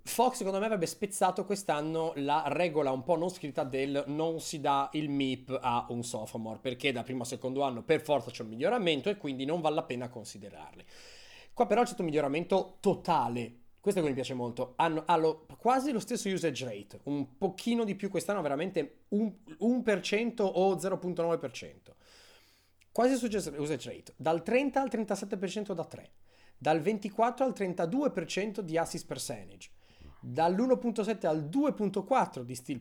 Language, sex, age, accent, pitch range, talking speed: Italian, male, 30-49, native, 135-205 Hz, 165 wpm